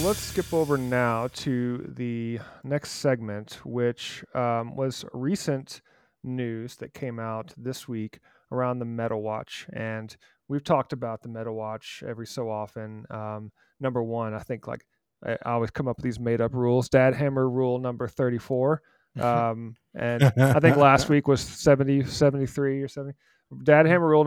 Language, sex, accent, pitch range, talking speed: English, male, American, 115-135 Hz, 165 wpm